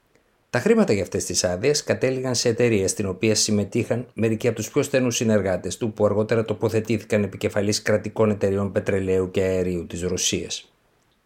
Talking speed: 160 wpm